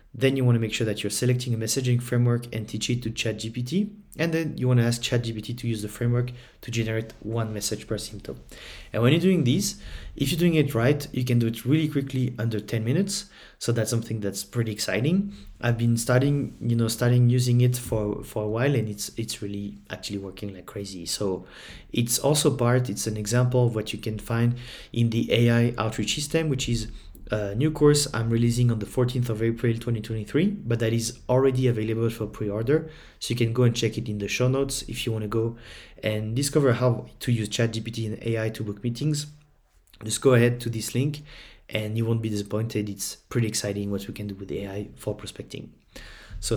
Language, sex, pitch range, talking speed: English, male, 105-125 Hz, 215 wpm